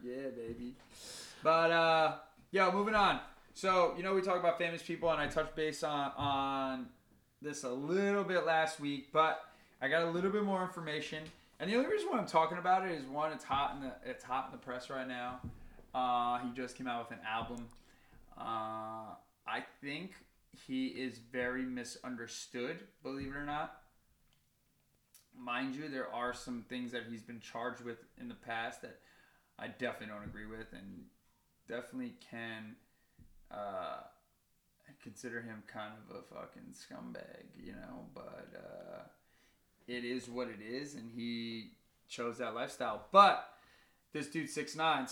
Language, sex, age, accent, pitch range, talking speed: English, male, 20-39, American, 120-155 Hz, 170 wpm